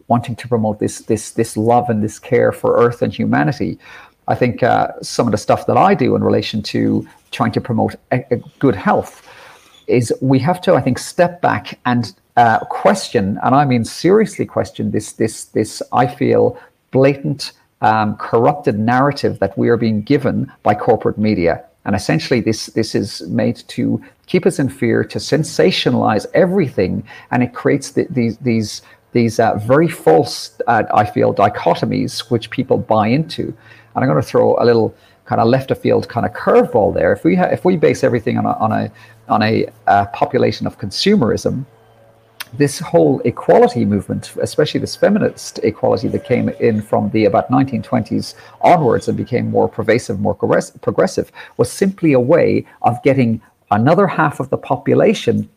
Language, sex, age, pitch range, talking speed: English, male, 40-59, 110-140 Hz, 180 wpm